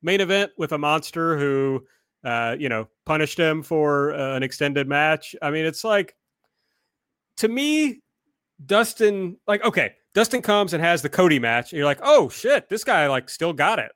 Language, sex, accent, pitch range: English, male, American, 140-210 Hz